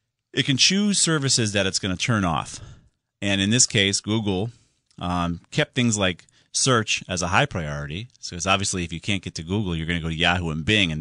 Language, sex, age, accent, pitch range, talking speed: English, male, 30-49, American, 85-120 Hz, 230 wpm